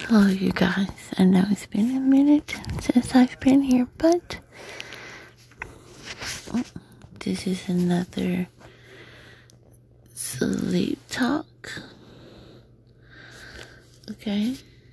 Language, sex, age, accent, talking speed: English, female, 30-49, American, 80 wpm